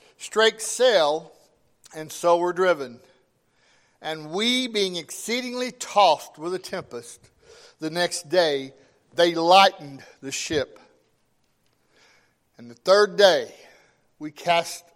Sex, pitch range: male, 140-195 Hz